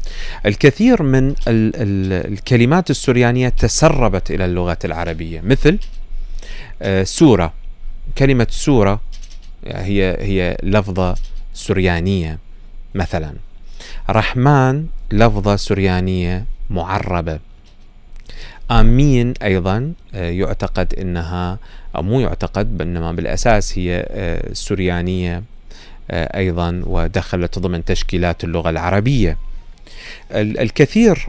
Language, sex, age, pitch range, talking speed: Arabic, male, 30-49, 90-105 Hz, 75 wpm